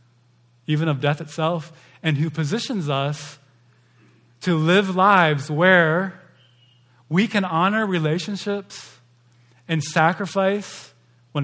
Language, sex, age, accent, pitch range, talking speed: English, male, 20-39, American, 125-160 Hz, 100 wpm